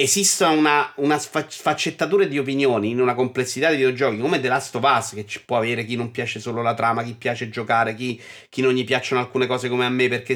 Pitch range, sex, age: 125-185 Hz, male, 30-49